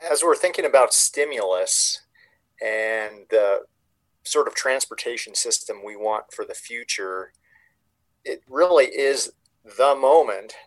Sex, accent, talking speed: male, American, 120 wpm